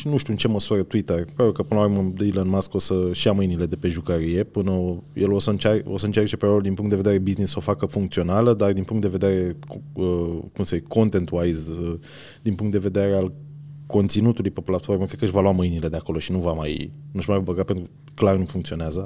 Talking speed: 225 wpm